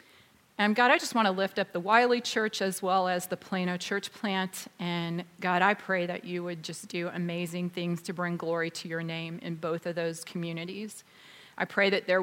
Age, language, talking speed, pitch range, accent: 30-49, English, 215 wpm, 170-190 Hz, American